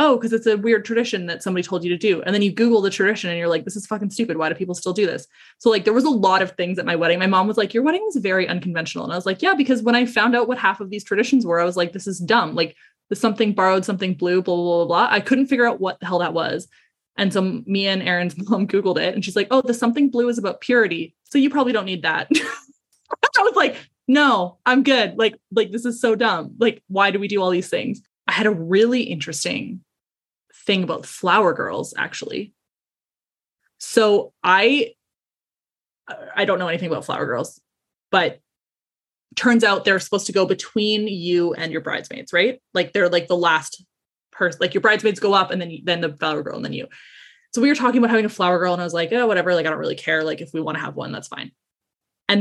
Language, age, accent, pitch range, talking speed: English, 20-39, American, 180-235 Hz, 250 wpm